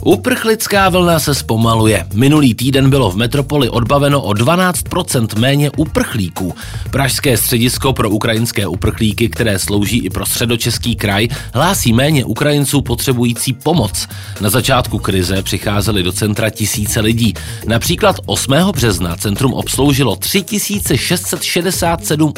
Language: Czech